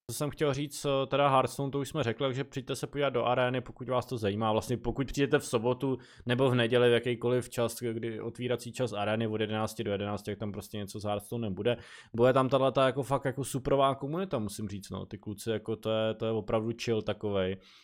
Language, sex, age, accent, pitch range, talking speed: Czech, male, 20-39, native, 110-135 Hz, 225 wpm